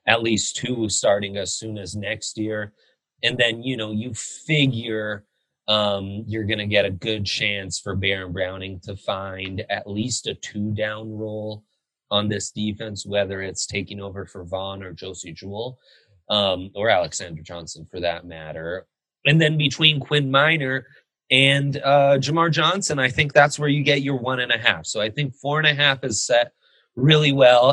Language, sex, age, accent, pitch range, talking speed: English, male, 30-49, American, 100-135 Hz, 180 wpm